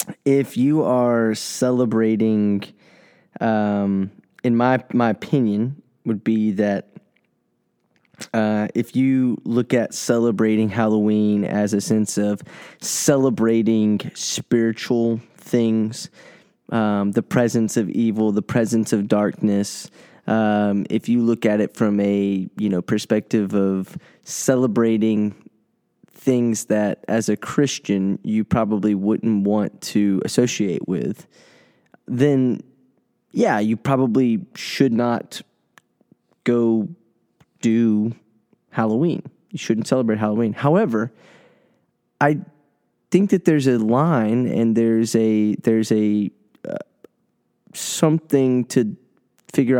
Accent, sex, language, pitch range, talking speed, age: American, male, English, 105-125 Hz, 105 wpm, 10-29